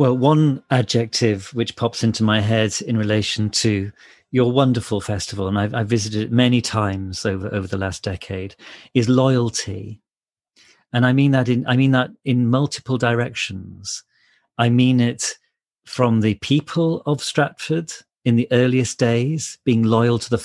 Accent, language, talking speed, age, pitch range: British, English, 160 wpm, 40-59, 105-125 Hz